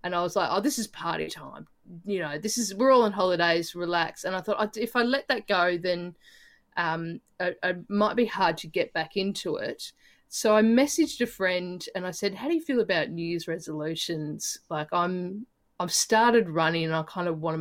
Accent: Australian